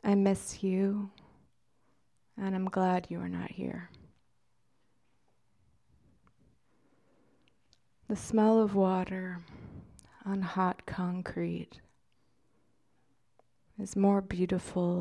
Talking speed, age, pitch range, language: 80 wpm, 30-49, 170-195 Hz, English